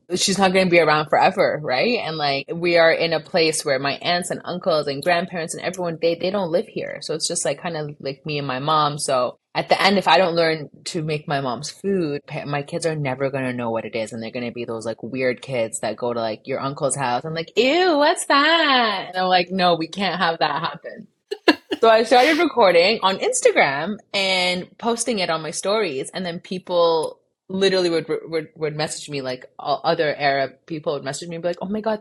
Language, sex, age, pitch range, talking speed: English, female, 20-39, 155-205 Hz, 235 wpm